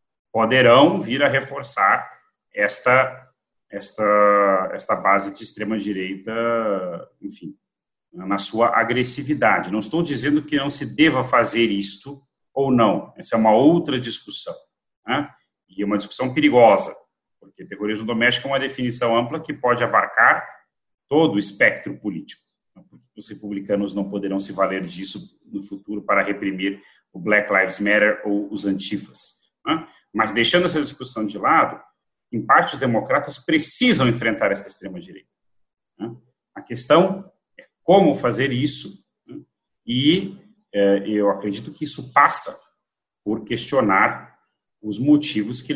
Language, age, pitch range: Portuguese, 40-59, 100-135 Hz